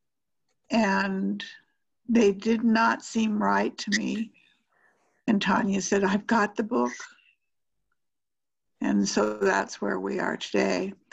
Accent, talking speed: American, 120 wpm